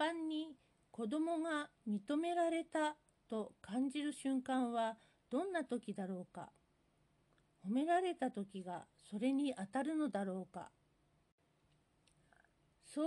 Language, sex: Japanese, female